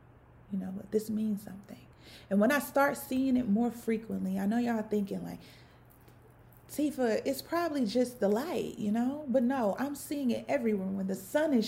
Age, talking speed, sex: 30-49, 185 wpm, female